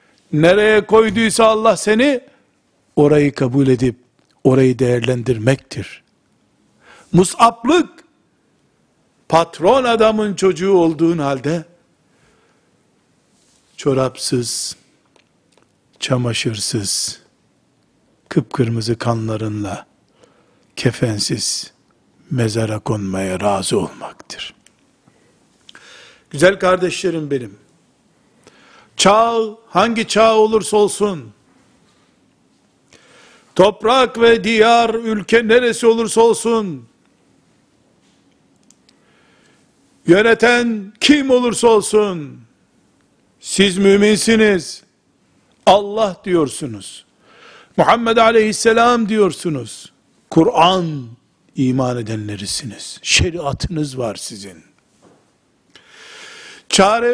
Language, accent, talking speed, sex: Turkish, native, 60 wpm, male